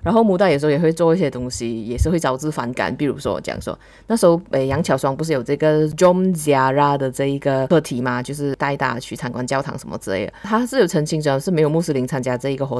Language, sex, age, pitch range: Chinese, female, 20-39, 135-185 Hz